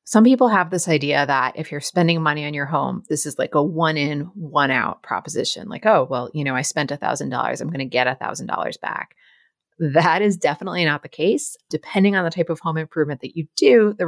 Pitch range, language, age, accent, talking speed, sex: 145-175 Hz, English, 30-49, American, 245 wpm, female